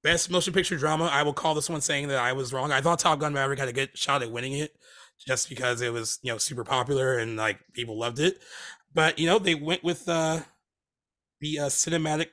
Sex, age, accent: male, 30-49, American